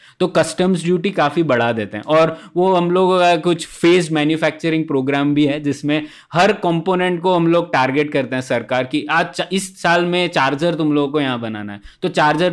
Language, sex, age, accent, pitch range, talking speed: Hindi, male, 20-39, native, 145-180 Hz, 90 wpm